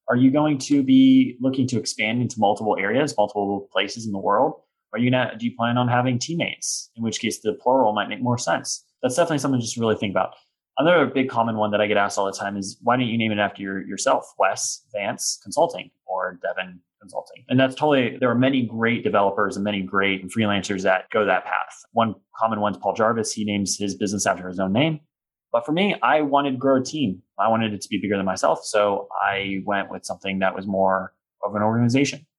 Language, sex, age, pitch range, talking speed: English, male, 20-39, 100-130 Hz, 225 wpm